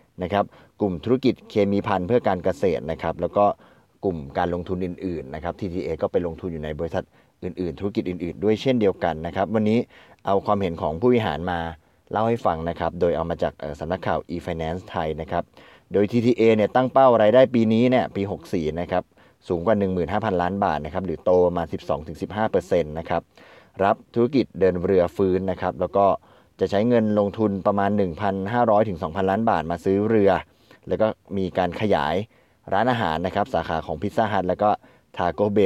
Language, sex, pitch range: Thai, male, 90-105 Hz